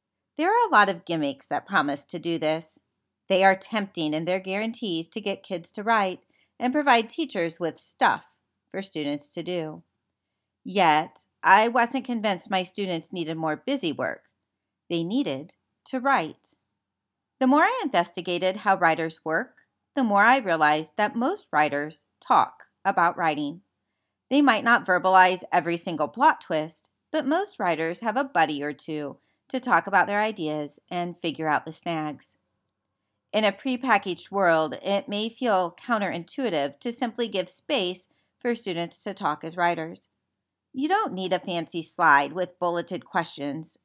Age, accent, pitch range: 40-59, American, 155-215 Hz